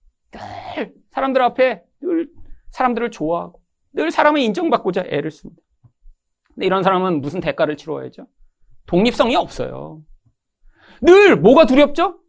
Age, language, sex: 40-59, Korean, male